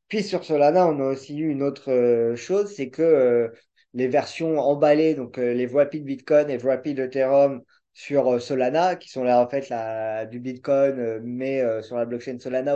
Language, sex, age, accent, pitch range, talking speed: French, male, 20-39, French, 125-160 Hz, 205 wpm